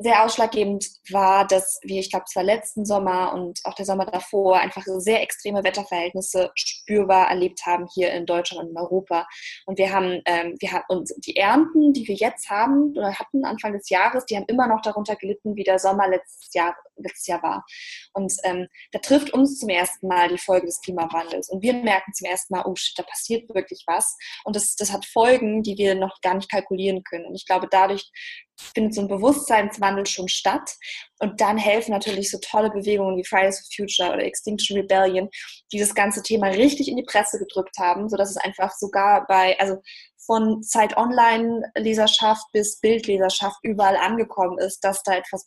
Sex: female